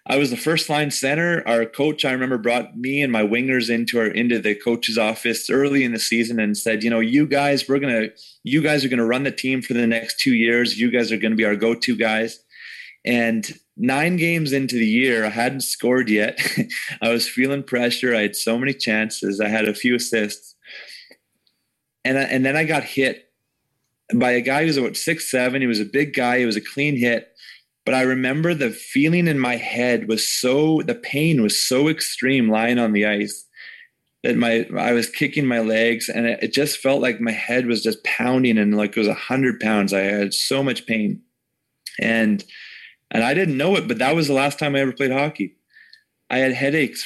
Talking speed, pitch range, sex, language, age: 215 wpm, 110-135 Hz, male, English, 30-49